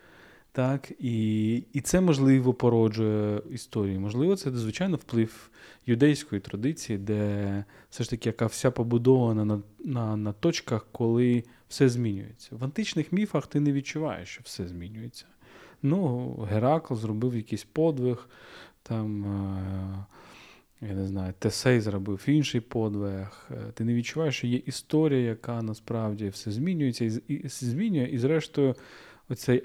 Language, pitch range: Ukrainian, 105-130 Hz